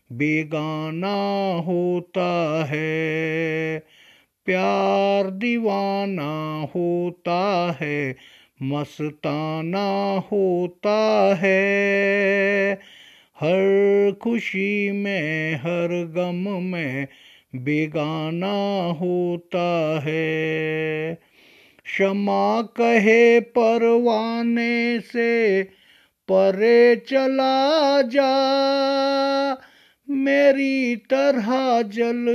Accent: native